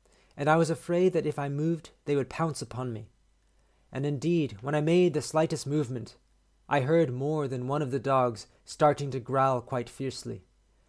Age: 30-49